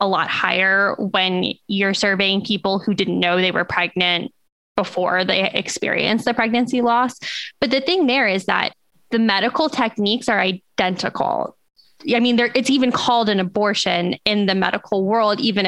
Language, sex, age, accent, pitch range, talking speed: English, female, 10-29, American, 200-235 Hz, 160 wpm